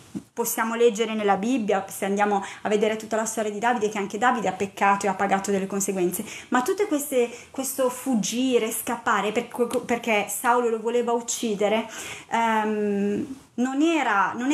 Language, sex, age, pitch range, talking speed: Italian, female, 30-49, 200-245 Hz, 140 wpm